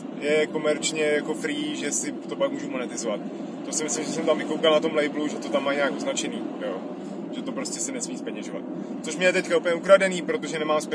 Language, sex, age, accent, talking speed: Czech, male, 30-49, native, 220 wpm